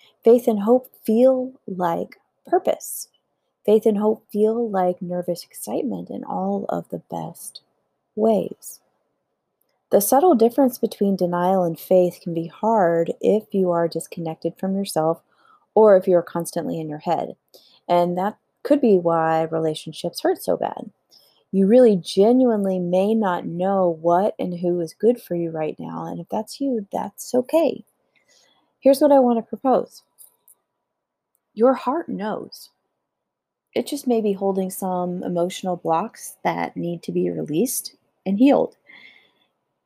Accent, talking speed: American, 145 wpm